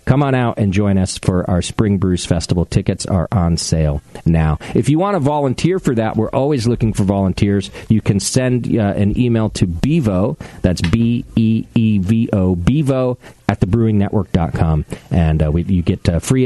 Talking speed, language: 175 wpm, English